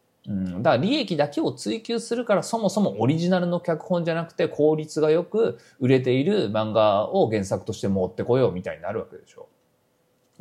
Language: Japanese